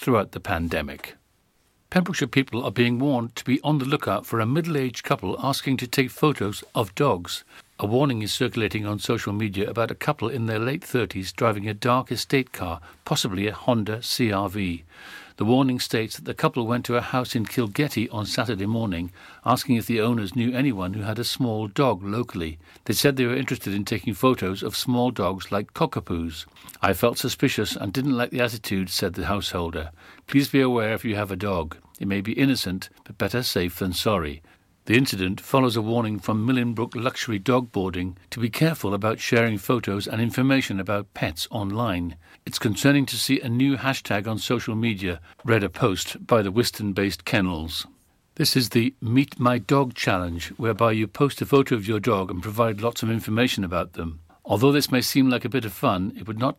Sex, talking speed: male, 195 wpm